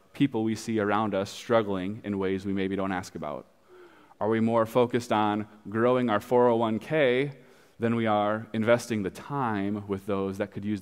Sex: male